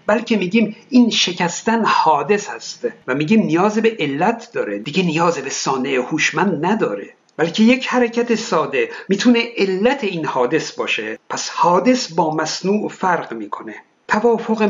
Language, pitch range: Persian, 170-235 Hz